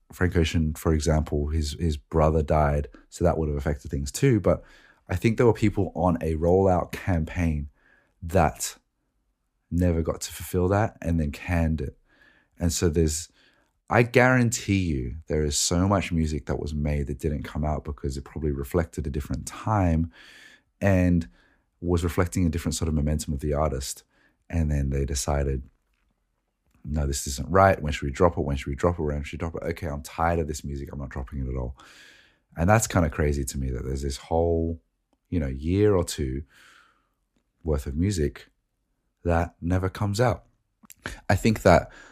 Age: 30-49